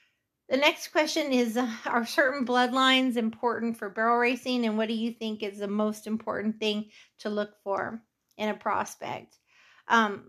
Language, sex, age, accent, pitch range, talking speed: English, female, 40-59, American, 220-250 Hz, 170 wpm